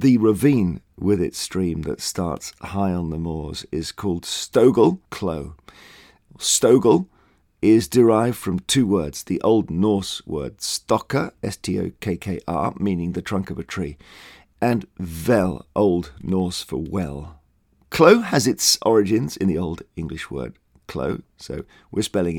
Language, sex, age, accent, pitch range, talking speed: English, male, 50-69, British, 80-110 Hz, 135 wpm